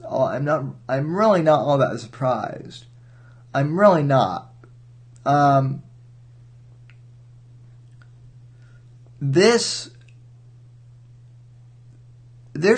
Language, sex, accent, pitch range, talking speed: English, male, American, 120-135 Hz, 65 wpm